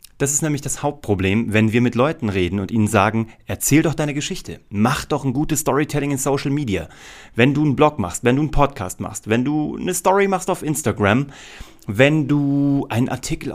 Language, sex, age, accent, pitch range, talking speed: German, male, 30-49, German, 105-130 Hz, 205 wpm